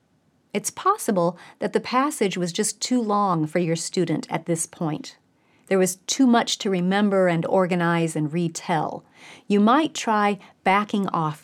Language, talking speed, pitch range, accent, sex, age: English, 155 wpm, 175-235 Hz, American, female, 40-59